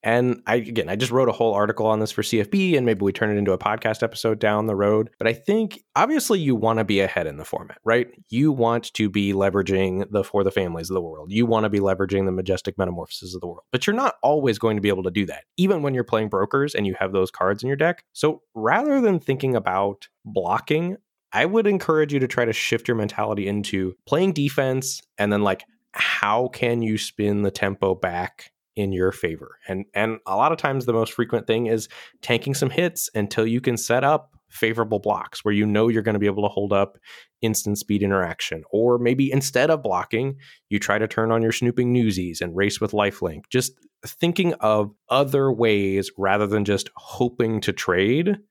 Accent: American